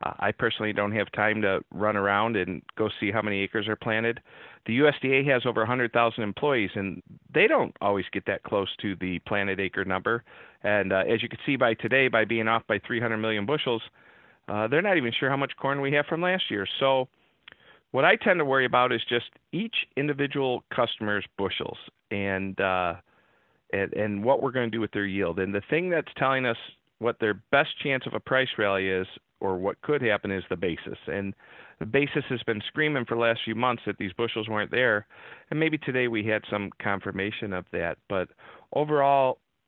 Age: 40-59